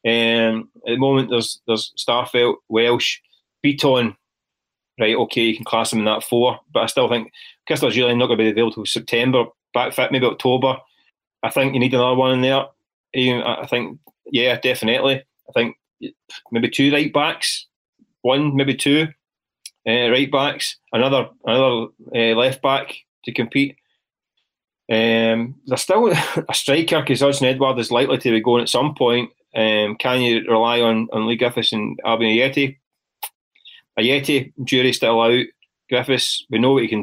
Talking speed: 170 wpm